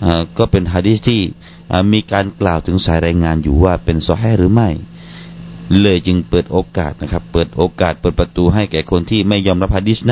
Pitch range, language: 85-140 Hz, Thai